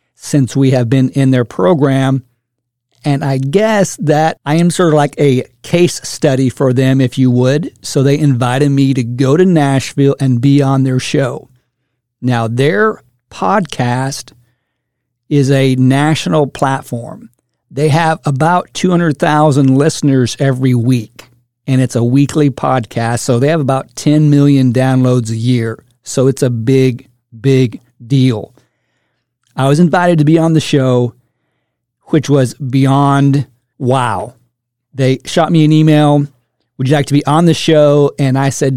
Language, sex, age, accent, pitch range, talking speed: English, male, 50-69, American, 125-150 Hz, 155 wpm